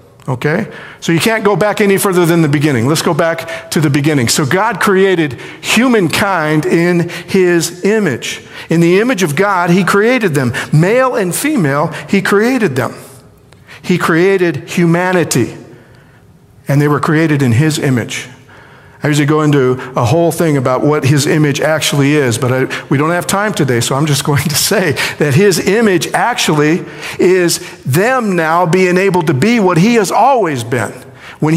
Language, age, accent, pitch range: English, 50-69, American, 150-200 Hz